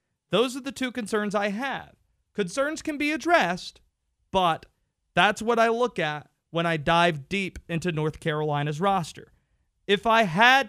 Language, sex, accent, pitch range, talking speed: English, male, American, 140-195 Hz, 155 wpm